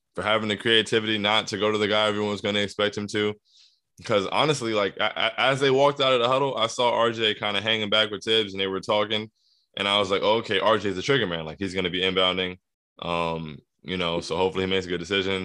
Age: 20-39